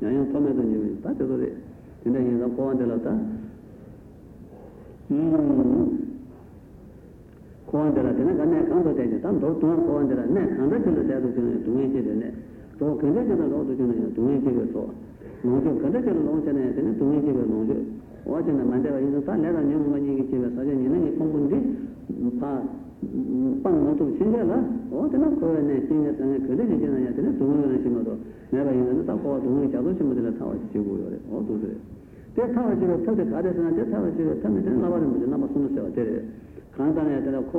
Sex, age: male, 60-79